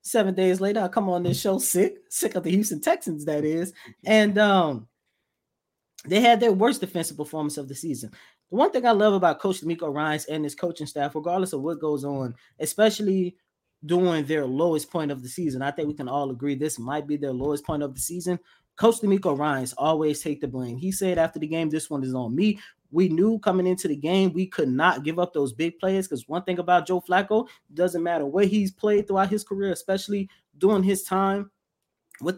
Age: 20-39